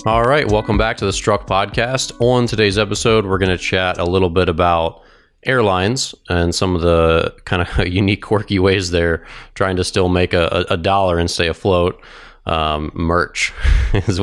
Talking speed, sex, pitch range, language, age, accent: 180 wpm, male, 85-100 Hz, English, 30-49, American